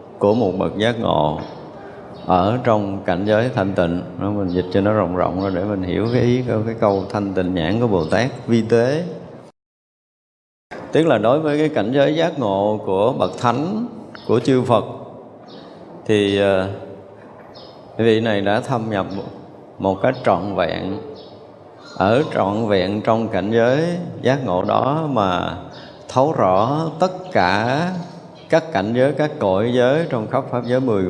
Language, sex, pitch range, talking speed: Vietnamese, male, 95-125 Hz, 165 wpm